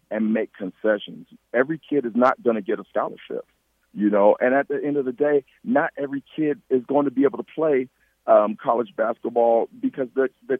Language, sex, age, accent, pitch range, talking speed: English, male, 40-59, American, 110-150 Hz, 210 wpm